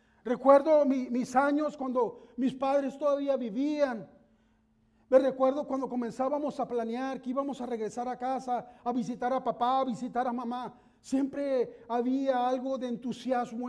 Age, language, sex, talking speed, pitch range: 40-59, English, male, 145 wpm, 245-285 Hz